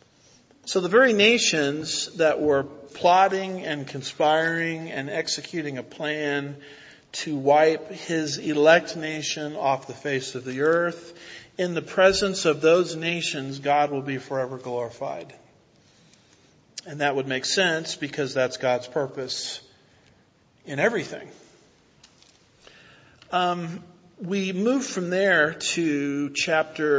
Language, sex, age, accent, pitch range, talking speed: English, male, 50-69, American, 135-170 Hz, 120 wpm